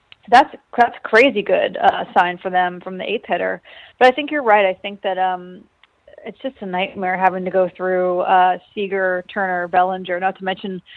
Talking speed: 195 wpm